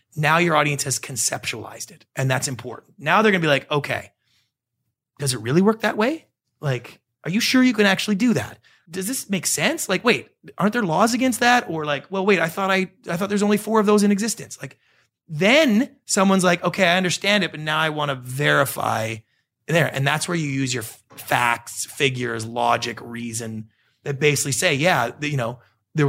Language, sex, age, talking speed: English, male, 30-49, 205 wpm